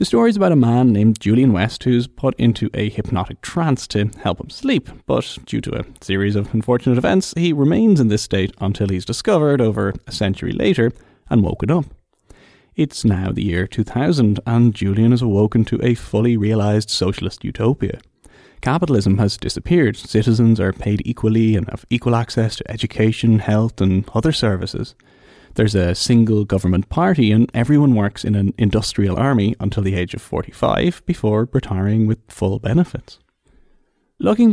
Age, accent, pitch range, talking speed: 30-49, Irish, 100-125 Hz, 170 wpm